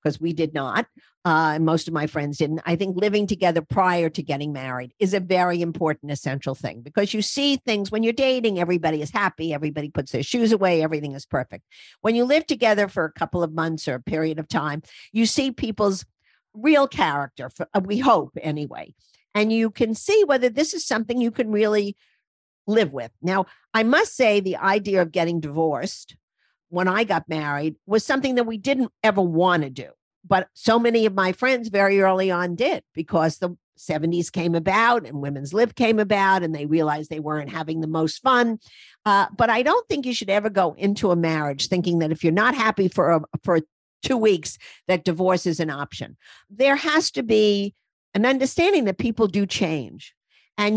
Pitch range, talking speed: 160-225 Hz, 195 wpm